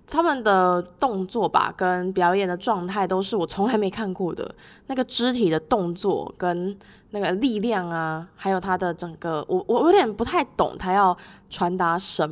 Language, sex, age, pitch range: Chinese, female, 20-39, 175-225 Hz